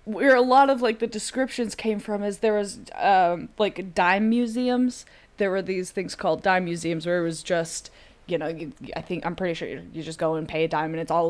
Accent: American